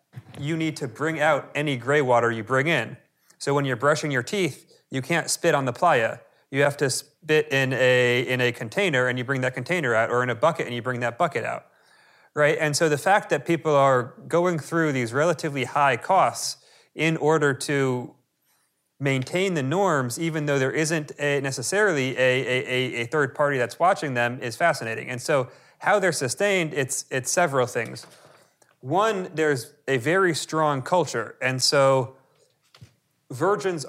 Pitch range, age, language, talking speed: 130-160 Hz, 30-49, English, 180 wpm